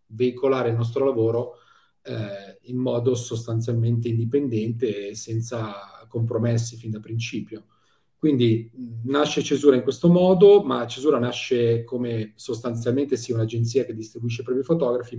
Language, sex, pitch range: Italian, male, 115-135 Hz